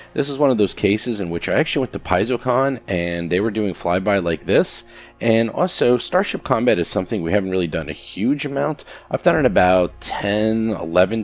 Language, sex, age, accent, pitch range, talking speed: English, male, 30-49, American, 85-115 Hz, 210 wpm